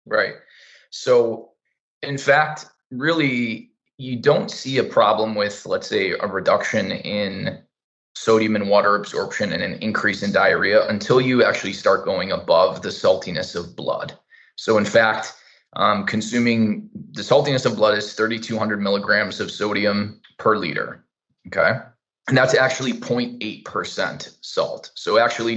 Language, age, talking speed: English, 20-39, 140 wpm